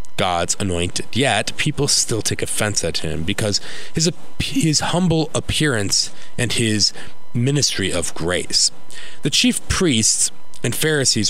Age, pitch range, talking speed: 30-49, 90-135 Hz, 125 wpm